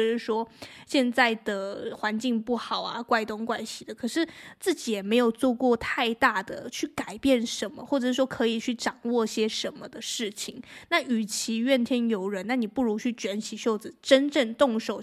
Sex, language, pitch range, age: female, Chinese, 220-265 Hz, 20-39